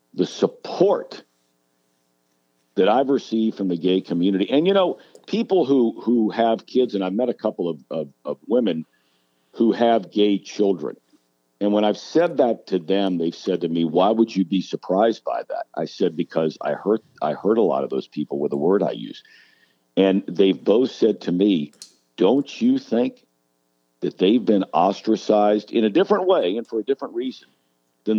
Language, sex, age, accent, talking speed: English, male, 50-69, American, 185 wpm